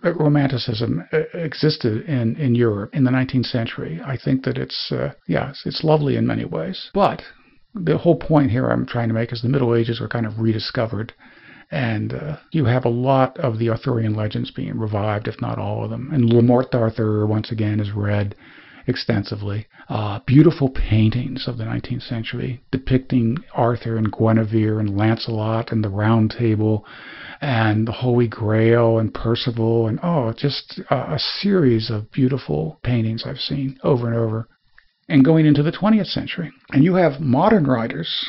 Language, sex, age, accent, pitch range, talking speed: English, male, 50-69, American, 115-135 Hz, 175 wpm